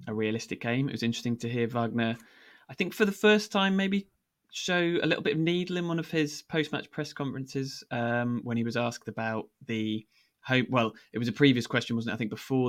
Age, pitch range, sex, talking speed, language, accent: 20-39, 110-135 Hz, male, 225 wpm, English, British